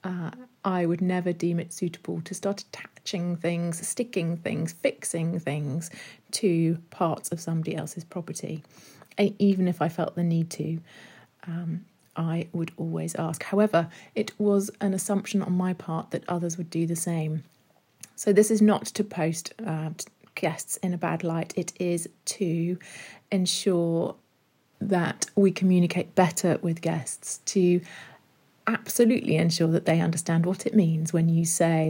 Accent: British